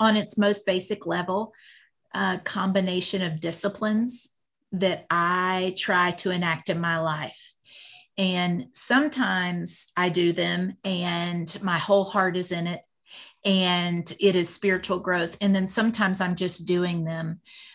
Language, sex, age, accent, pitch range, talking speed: English, female, 40-59, American, 175-205 Hz, 140 wpm